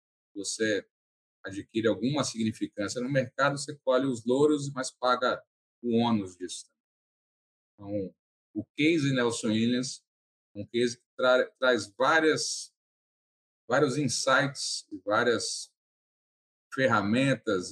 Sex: male